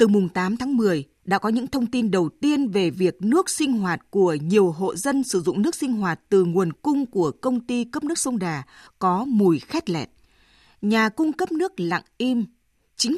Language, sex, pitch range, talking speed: Vietnamese, female, 185-260 Hz, 215 wpm